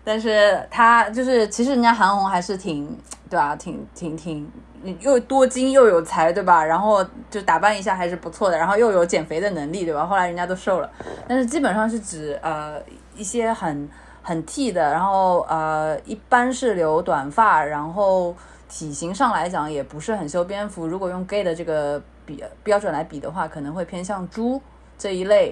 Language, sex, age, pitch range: Chinese, female, 20-39, 160-205 Hz